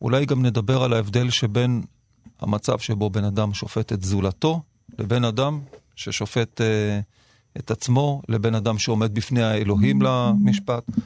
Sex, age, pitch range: male, 40-59, 110-125 Hz